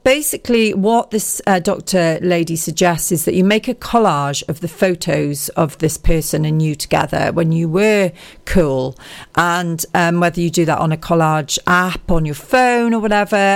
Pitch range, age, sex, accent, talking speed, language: 160-195 Hz, 40-59, female, British, 180 wpm, English